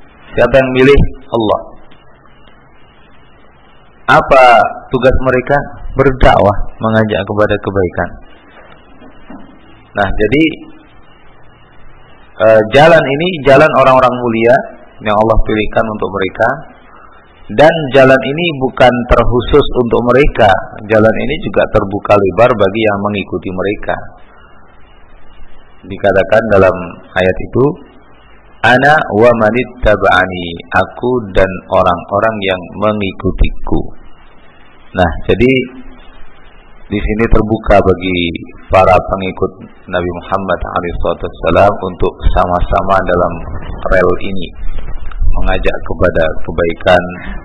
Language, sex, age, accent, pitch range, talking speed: Indonesian, male, 40-59, native, 90-110 Hz, 90 wpm